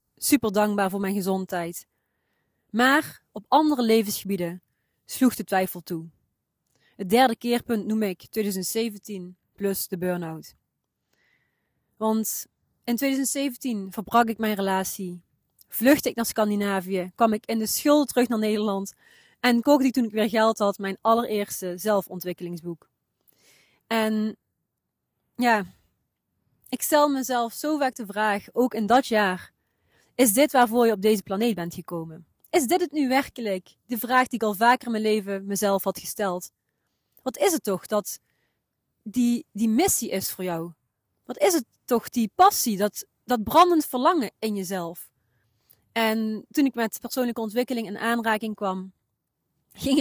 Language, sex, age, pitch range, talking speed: Dutch, female, 30-49, 190-245 Hz, 150 wpm